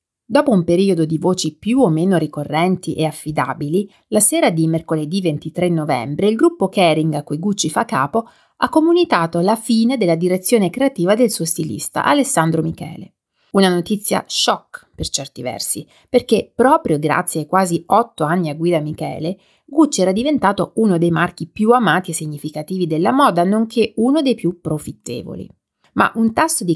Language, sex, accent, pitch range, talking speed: Italian, female, native, 165-220 Hz, 165 wpm